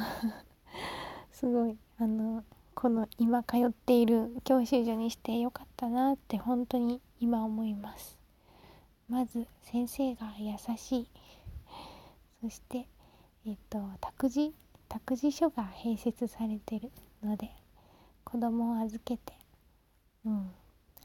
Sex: female